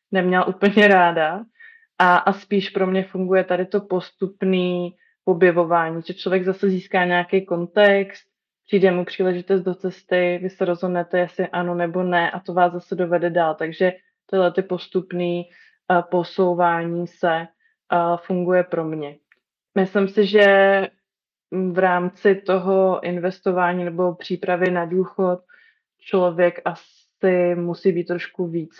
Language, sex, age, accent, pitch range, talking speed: Czech, female, 20-39, native, 175-195 Hz, 135 wpm